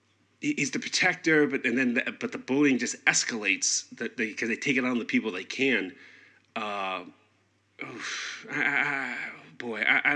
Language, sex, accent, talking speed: English, male, American, 185 wpm